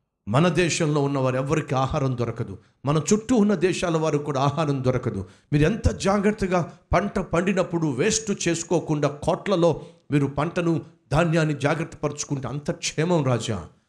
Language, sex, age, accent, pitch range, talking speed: Telugu, male, 50-69, native, 125-180 Hz, 125 wpm